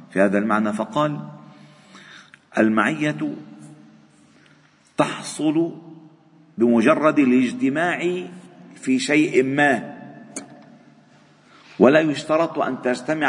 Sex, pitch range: male, 120-190 Hz